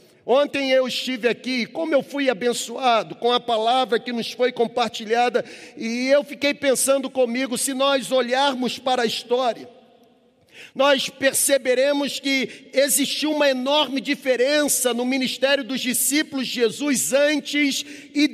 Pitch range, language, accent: 260-300 Hz, Portuguese, Brazilian